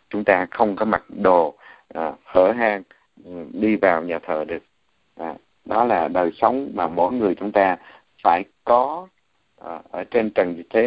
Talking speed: 175 wpm